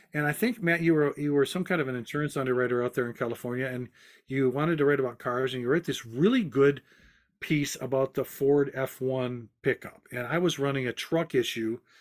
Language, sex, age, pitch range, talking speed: English, male, 50-69, 130-170 Hz, 220 wpm